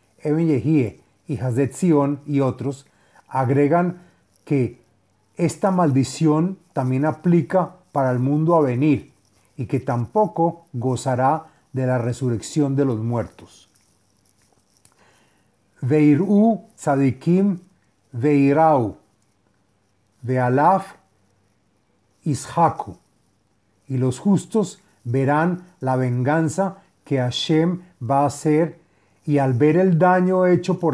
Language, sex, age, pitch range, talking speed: Spanish, male, 40-59, 120-165 Hz, 100 wpm